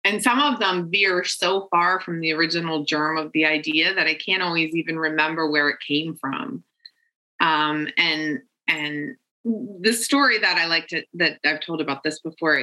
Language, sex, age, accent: English, female, 20-39, American